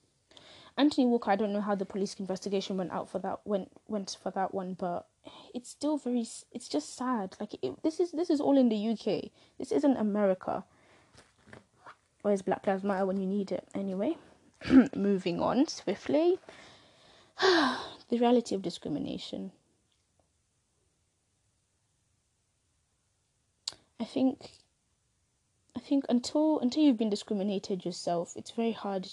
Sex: female